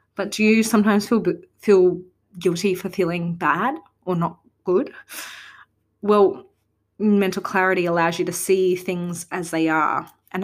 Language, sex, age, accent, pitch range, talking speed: English, female, 20-39, Australian, 170-205 Hz, 145 wpm